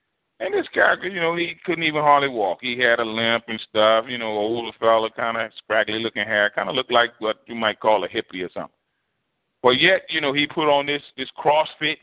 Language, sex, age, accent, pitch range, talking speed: English, male, 40-59, American, 115-160 Hz, 235 wpm